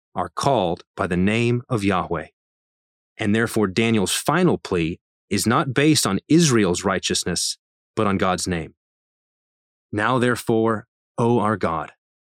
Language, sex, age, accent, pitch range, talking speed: English, male, 30-49, American, 95-125 Hz, 130 wpm